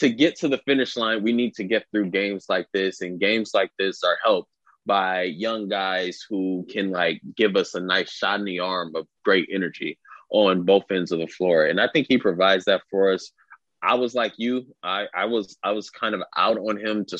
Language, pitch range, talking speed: English, 95-115 Hz, 230 wpm